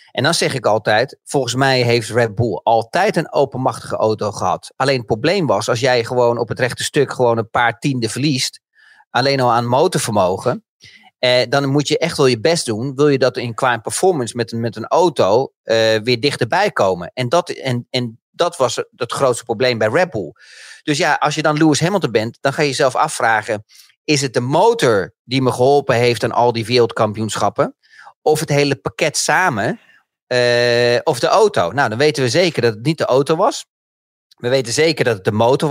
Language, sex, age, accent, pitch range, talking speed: Dutch, male, 40-59, Dutch, 120-155 Hz, 200 wpm